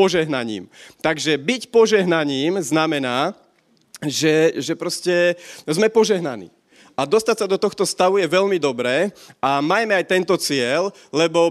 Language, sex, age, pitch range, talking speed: Slovak, male, 30-49, 155-185 Hz, 130 wpm